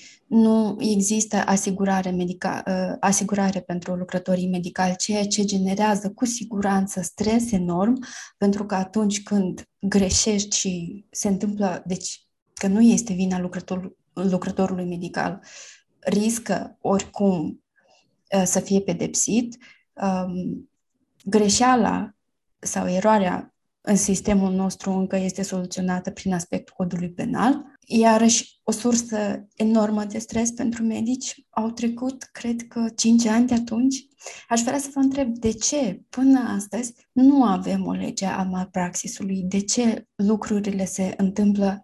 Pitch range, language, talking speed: 190-230 Hz, Romanian, 120 wpm